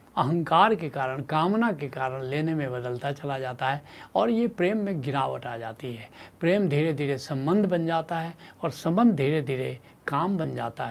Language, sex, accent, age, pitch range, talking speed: Hindi, male, native, 70-89, 135-185 Hz, 185 wpm